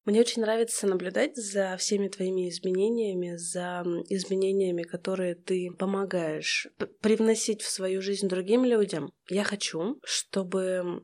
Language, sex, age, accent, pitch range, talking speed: Russian, female, 20-39, native, 180-205 Hz, 125 wpm